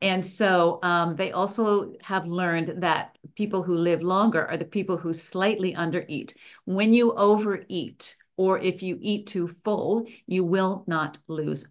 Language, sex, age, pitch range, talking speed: English, female, 50-69, 170-205 Hz, 165 wpm